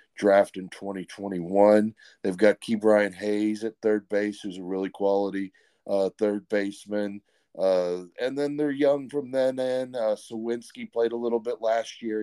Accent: American